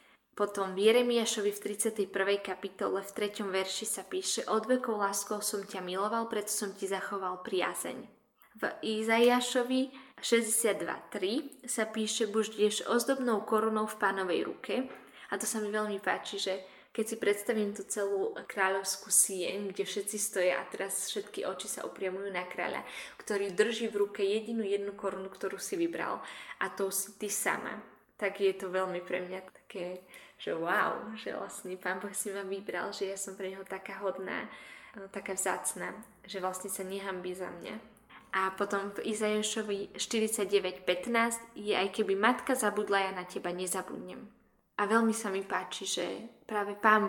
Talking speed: 160 wpm